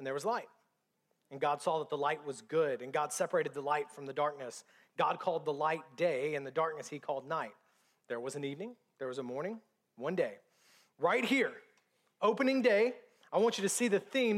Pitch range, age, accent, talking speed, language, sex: 185-265 Hz, 30-49, American, 215 wpm, English, male